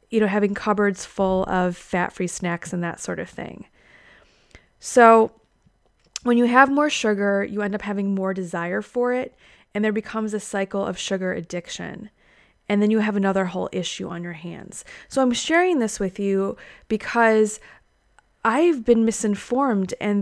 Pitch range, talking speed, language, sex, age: 180-215 Hz, 170 wpm, English, female, 20-39